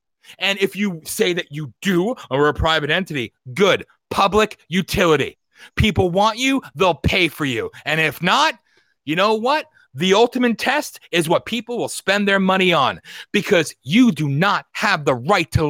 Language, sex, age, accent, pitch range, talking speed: English, male, 30-49, American, 170-265 Hz, 175 wpm